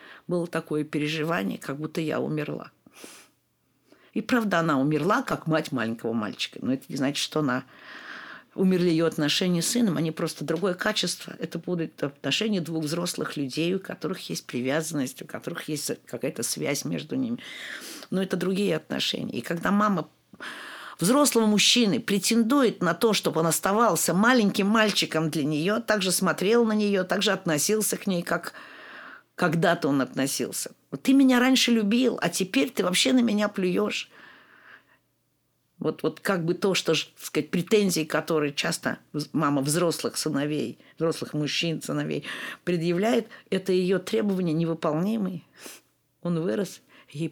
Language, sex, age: Russian, female, 50-69